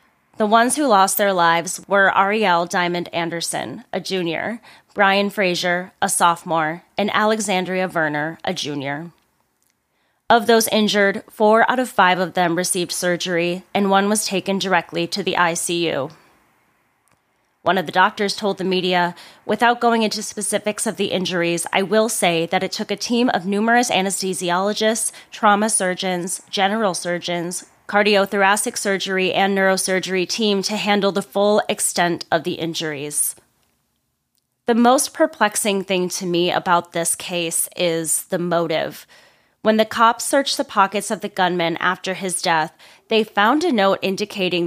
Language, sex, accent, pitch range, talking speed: English, female, American, 175-210 Hz, 150 wpm